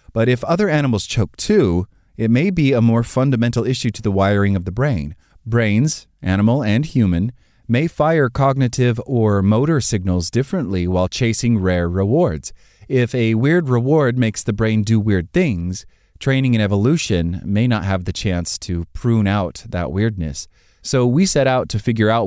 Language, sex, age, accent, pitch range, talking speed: English, male, 30-49, American, 90-120 Hz, 170 wpm